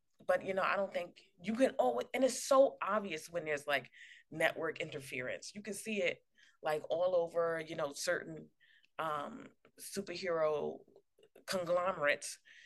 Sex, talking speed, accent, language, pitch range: female, 145 wpm, American, English, 150-215 Hz